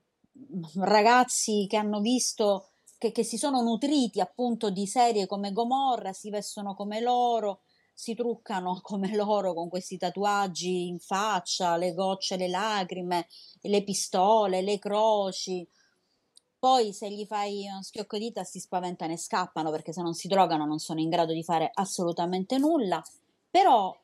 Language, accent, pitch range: Italian, native, 185-240 Hz